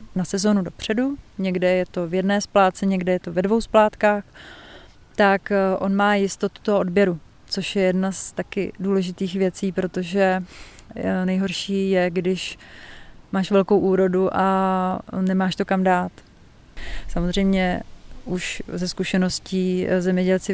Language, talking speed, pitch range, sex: Czech, 130 wpm, 180-200 Hz, female